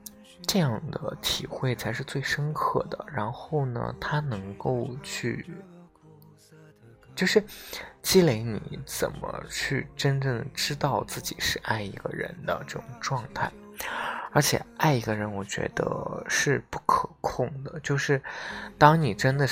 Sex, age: male, 20-39